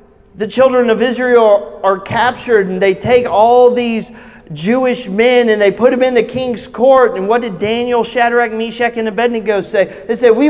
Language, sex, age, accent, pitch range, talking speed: English, male, 30-49, American, 175-240 Hz, 195 wpm